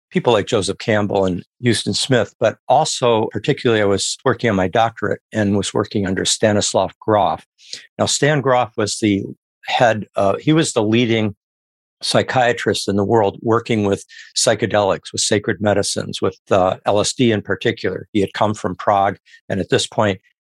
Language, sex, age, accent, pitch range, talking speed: English, male, 50-69, American, 95-115 Hz, 165 wpm